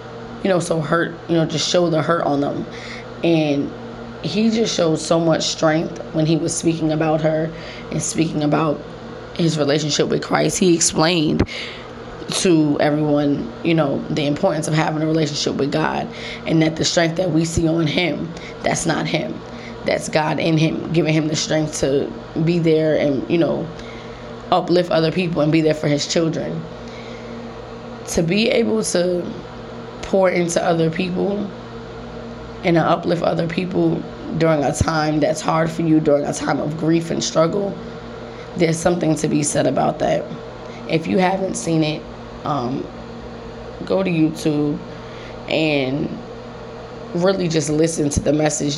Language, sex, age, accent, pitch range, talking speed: English, female, 20-39, American, 125-165 Hz, 160 wpm